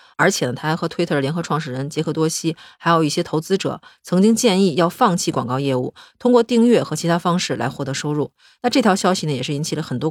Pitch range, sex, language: 145-190 Hz, female, Chinese